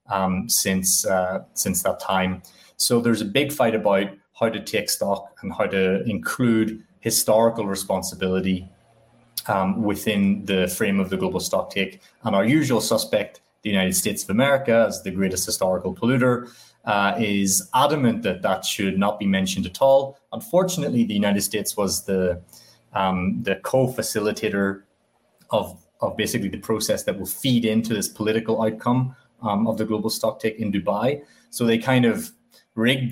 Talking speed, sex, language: 165 wpm, male, English